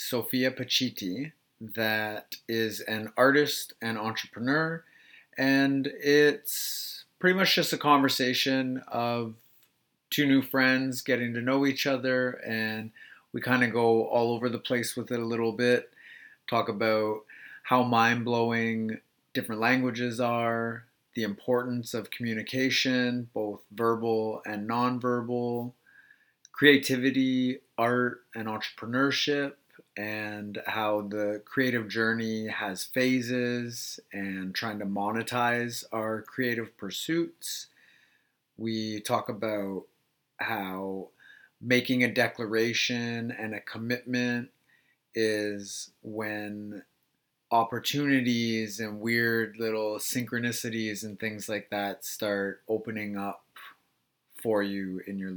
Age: 30-49